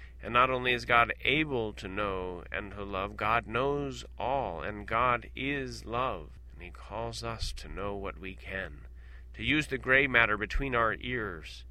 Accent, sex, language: American, male, English